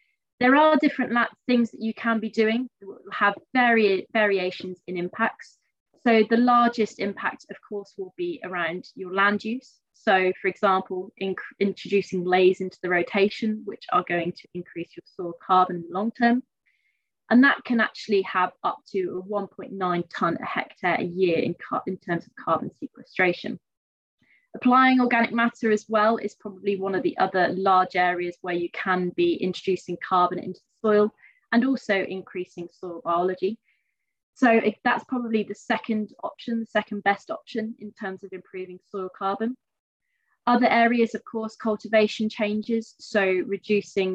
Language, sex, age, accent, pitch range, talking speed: English, female, 20-39, British, 185-230 Hz, 160 wpm